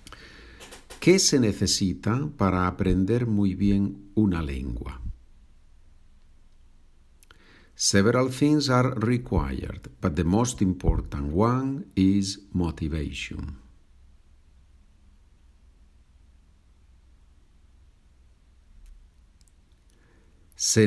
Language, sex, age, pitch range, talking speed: Spanish, male, 50-69, 70-105 Hz, 60 wpm